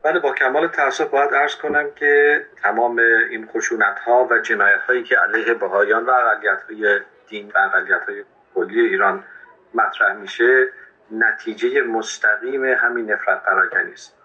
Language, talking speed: Persian, 145 wpm